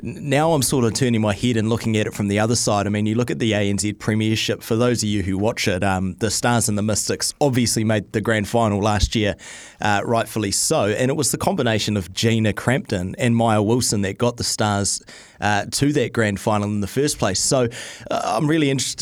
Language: English